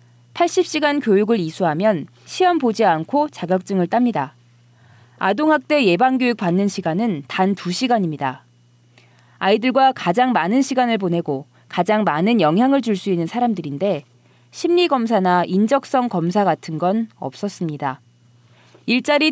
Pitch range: 160-255 Hz